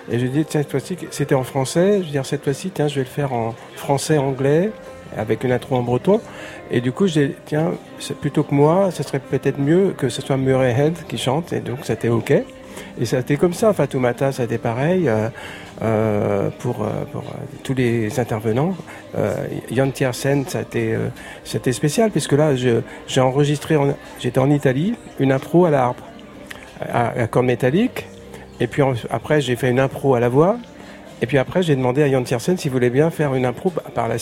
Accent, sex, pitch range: French, male, 125-150 Hz